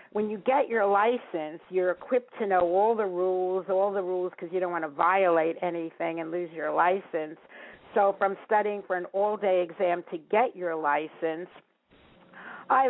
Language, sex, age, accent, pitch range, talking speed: English, female, 50-69, American, 175-210 Hz, 175 wpm